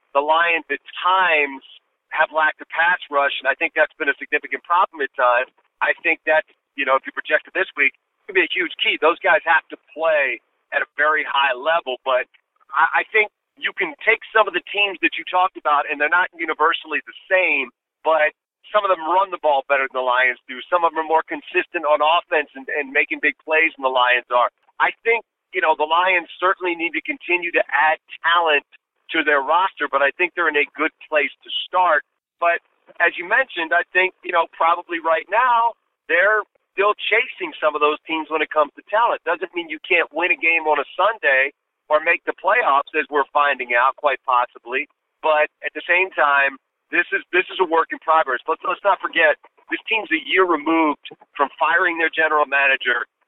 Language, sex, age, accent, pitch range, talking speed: English, male, 40-59, American, 150-180 Hz, 215 wpm